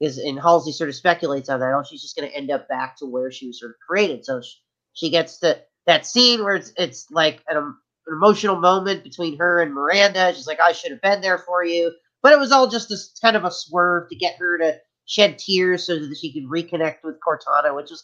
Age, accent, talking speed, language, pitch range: 30-49, American, 255 wpm, English, 155-210 Hz